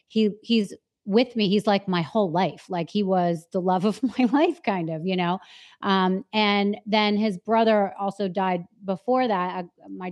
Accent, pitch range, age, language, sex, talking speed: American, 175-215 Hz, 30-49, English, female, 185 wpm